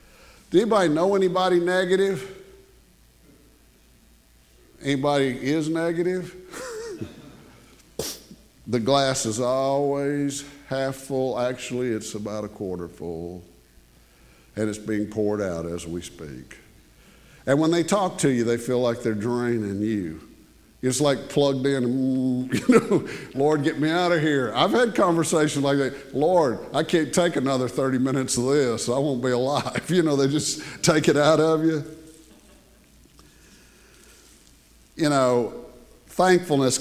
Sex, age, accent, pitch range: male, 50-69, American, 115-155 Hz